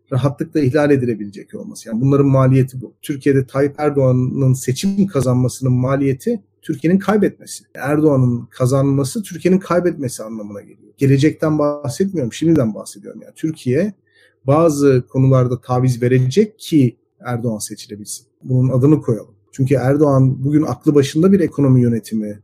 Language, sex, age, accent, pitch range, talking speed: Turkish, male, 40-59, native, 125-150 Hz, 125 wpm